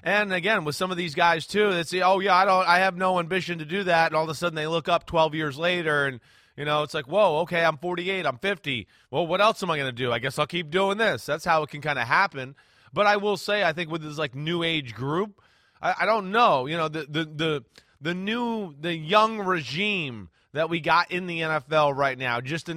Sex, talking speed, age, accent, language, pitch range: male, 265 wpm, 30-49, American, English, 145-180 Hz